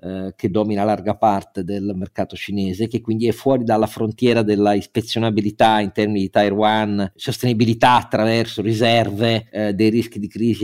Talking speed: 150 wpm